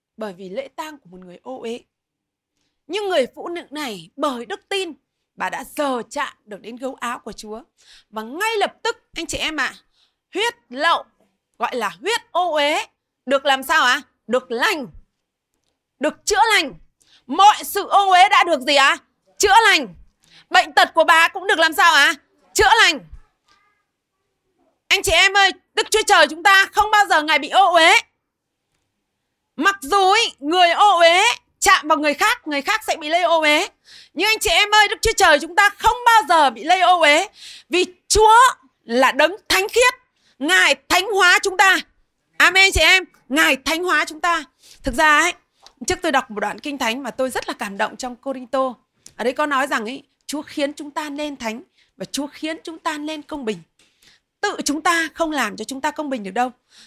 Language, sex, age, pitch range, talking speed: Vietnamese, female, 20-39, 270-390 Hz, 205 wpm